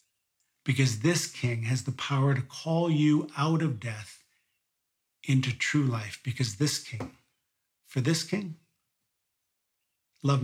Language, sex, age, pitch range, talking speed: English, male, 40-59, 135-170 Hz, 125 wpm